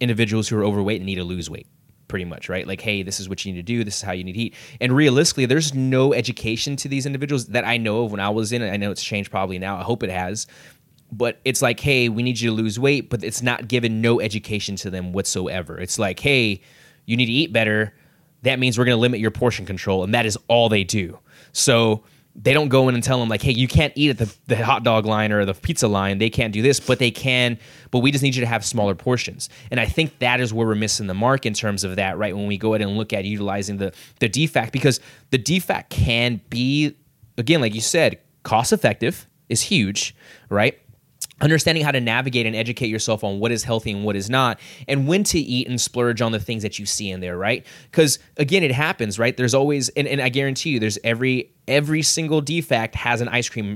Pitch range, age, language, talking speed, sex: 105-130 Hz, 20-39, English, 250 wpm, male